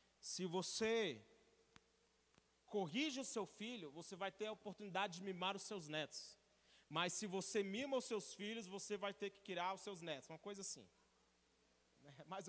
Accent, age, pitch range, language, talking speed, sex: Brazilian, 30-49, 210-275 Hz, Portuguese, 170 wpm, male